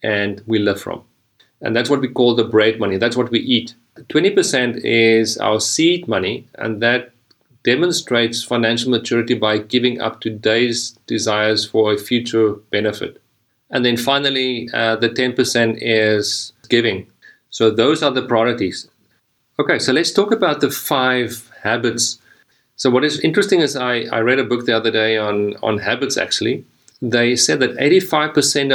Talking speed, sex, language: 165 wpm, male, English